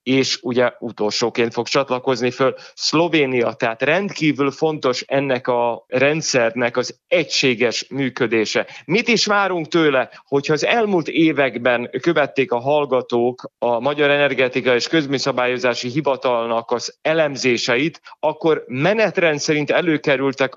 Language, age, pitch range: Hungarian, 30-49, 125-155 Hz